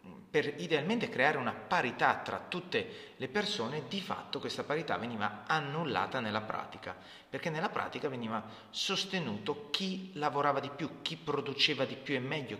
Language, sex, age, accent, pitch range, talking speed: Italian, male, 30-49, native, 125-170 Hz, 155 wpm